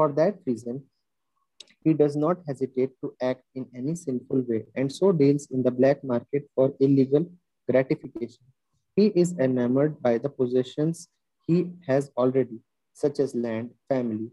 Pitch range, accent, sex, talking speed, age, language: 125-155 Hz, Indian, male, 150 wpm, 30-49, English